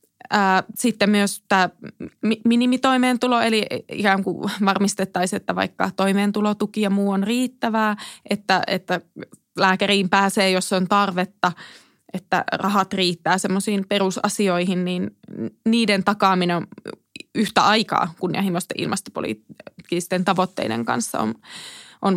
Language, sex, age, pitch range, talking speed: Finnish, female, 20-39, 185-210 Hz, 105 wpm